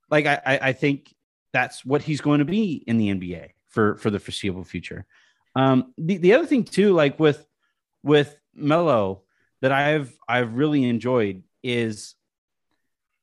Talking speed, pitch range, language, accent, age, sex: 155 wpm, 115-150 Hz, English, American, 30-49, male